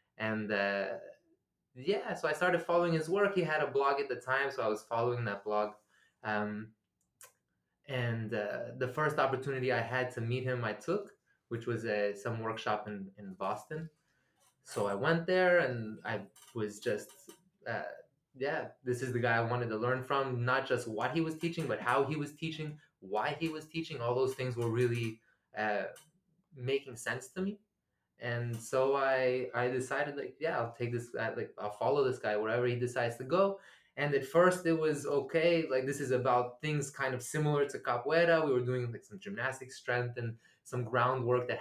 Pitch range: 120-145 Hz